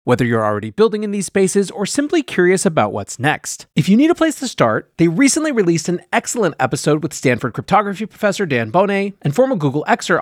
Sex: male